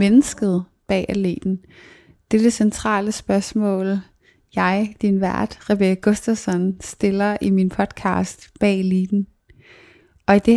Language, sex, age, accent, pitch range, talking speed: English, female, 20-39, Danish, 190-220 Hz, 125 wpm